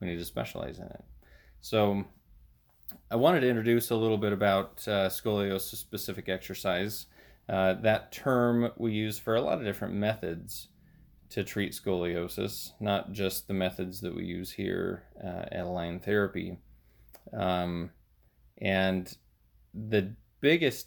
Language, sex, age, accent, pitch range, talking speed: English, male, 30-49, American, 90-105 Hz, 140 wpm